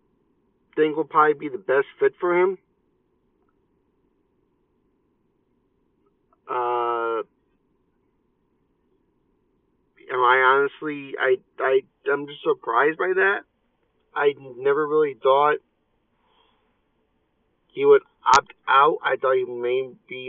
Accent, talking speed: American, 100 wpm